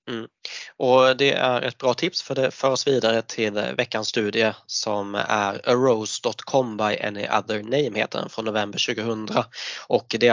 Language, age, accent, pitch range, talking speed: Swedish, 20-39, native, 110-125 Hz, 175 wpm